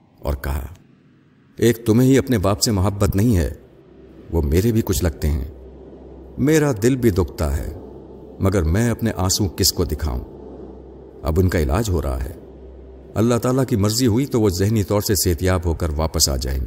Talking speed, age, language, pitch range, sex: 185 wpm, 50-69, Urdu, 80-110 Hz, male